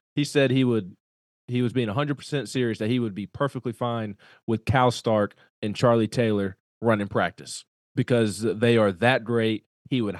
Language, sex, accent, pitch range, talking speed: English, male, American, 110-135 Hz, 180 wpm